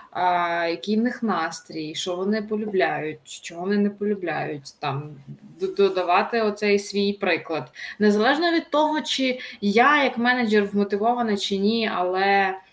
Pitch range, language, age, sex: 190-240 Hz, Ukrainian, 20-39, female